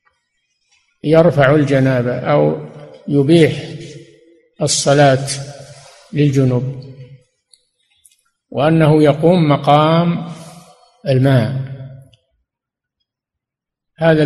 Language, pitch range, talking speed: Arabic, 135-175 Hz, 45 wpm